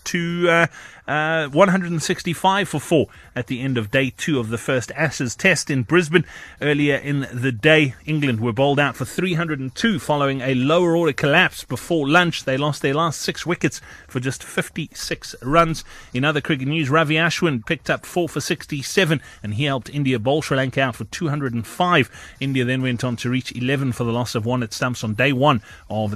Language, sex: English, male